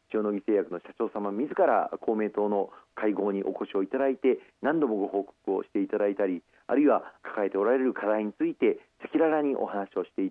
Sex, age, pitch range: male, 40-59, 100-140 Hz